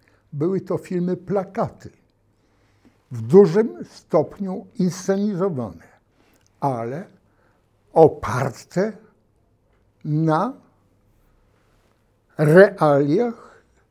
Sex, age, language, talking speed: male, 60-79, Polish, 50 wpm